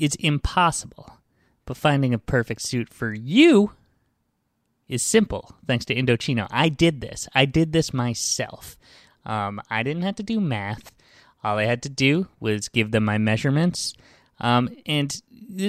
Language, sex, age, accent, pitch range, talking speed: English, male, 20-39, American, 115-150 Hz, 155 wpm